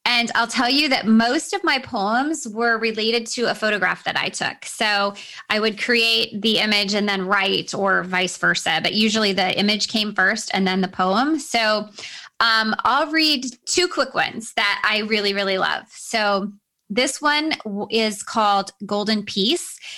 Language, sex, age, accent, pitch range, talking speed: English, female, 20-39, American, 190-225 Hz, 175 wpm